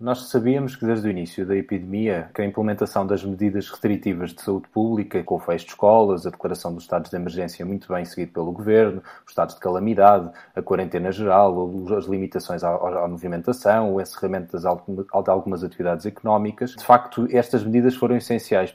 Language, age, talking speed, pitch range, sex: Portuguese, 20-39, 190 wpm, 100-125 Hz, male